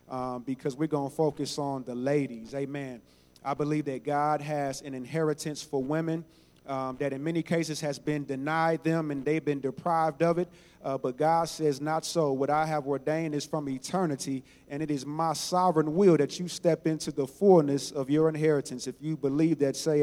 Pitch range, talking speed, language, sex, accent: 140-160 Hz, 200 wpm, English, male, American